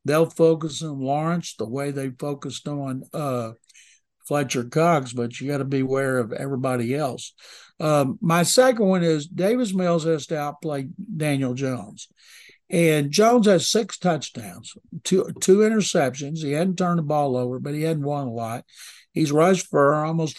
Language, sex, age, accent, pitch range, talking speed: English, male, 60-79, American, 135-160 Hz, 170 wpm